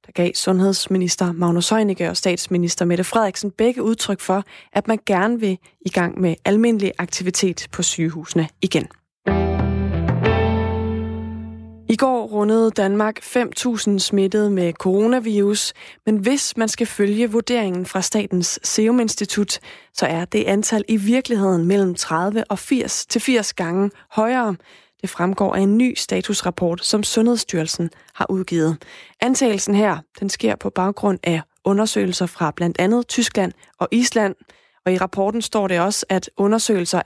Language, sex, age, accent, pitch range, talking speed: Danish, female, 20-39, native, 180-220 Hz, 140 wpm